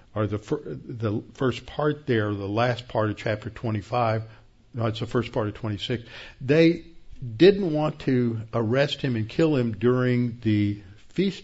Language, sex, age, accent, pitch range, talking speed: English, male, 60-79, American, 110-130 Hz, 165 wpm